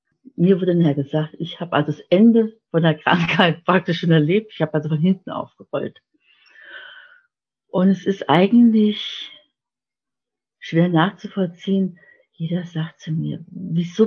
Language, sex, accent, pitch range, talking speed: German, female, German, 160-200 Hz, 135 wpm